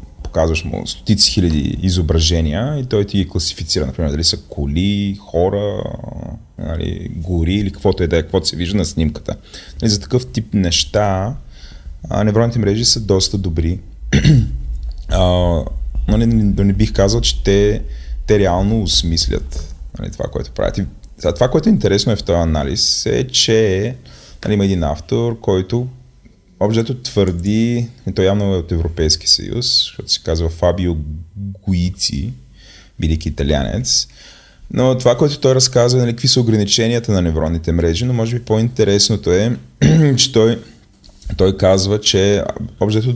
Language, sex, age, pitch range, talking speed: Bulgarian, male, 30-49, 80-110 Hz, 150 wpm